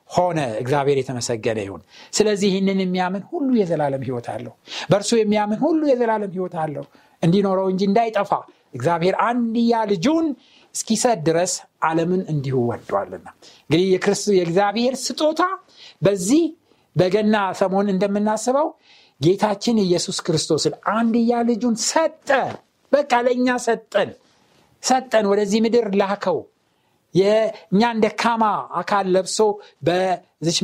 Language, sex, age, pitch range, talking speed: Amharic, male, 60-79, 170-245 Hz, 105 wpm